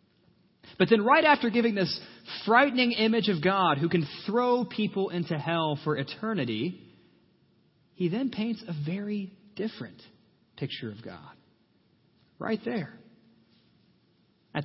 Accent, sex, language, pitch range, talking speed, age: American, male, English, 120-175 Hz, 125 wpm, 40-59